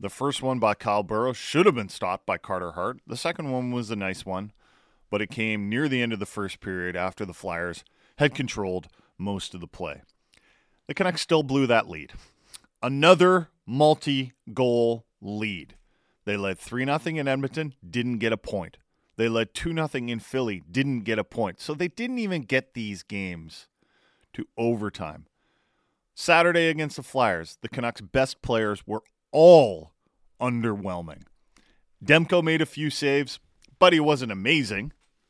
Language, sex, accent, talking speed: English, male, American, 160 wpm